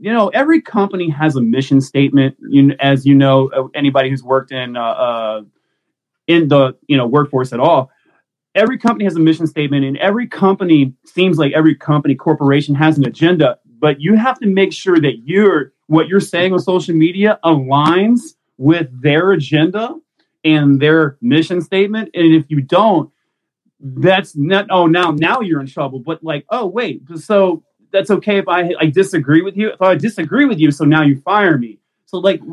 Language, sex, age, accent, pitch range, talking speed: English, male, 30-49, American, 145-190 Hz, 185 wpm